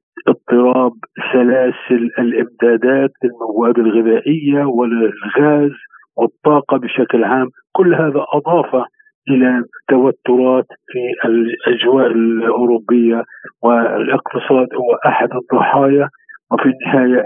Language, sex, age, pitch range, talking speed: Arabic, male, 50-69, 125-150 Hz, 80 wpm